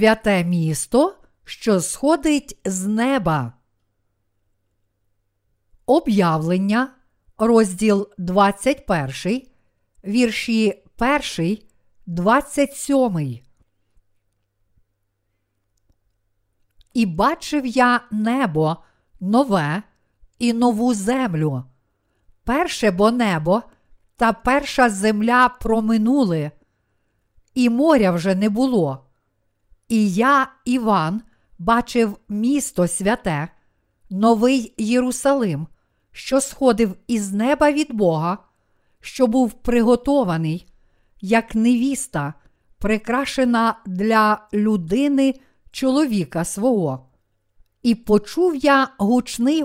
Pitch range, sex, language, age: 150-250 Hz, female, Ukrainian, 50-69